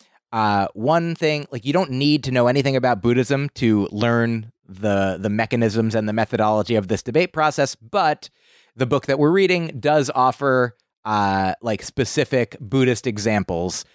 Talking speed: 160 wpm